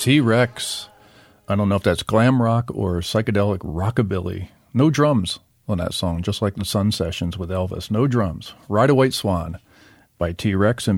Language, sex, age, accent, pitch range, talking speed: English, male, 50-69, American, 95-115 Hz, 175 wpm